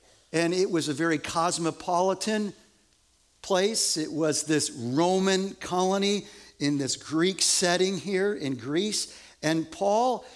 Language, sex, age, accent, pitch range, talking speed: English, male, 50-69, American, 155-205 Hz, 120 wpm